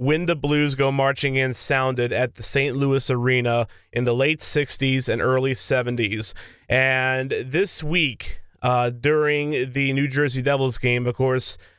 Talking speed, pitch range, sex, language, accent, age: 160 wpm, 120-145 Hz, male, English, American, 30-49